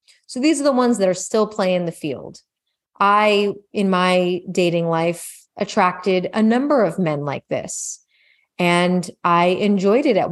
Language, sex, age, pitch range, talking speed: English, female, 30-49, 175-220 Hz, 165 wpm